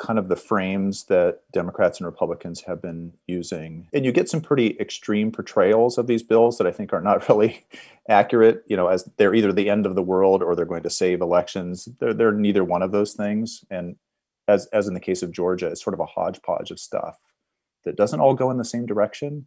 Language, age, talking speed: English, 30-49, 230 wpm